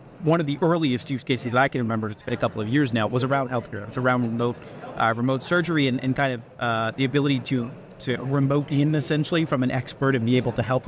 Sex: male